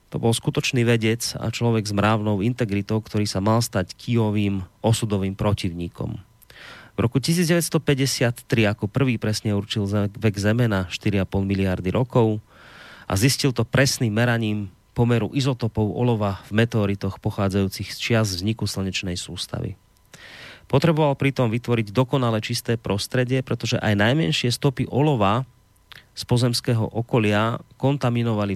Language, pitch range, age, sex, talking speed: Slovak, 100-120 Hz, 30-49, male, 125 wpm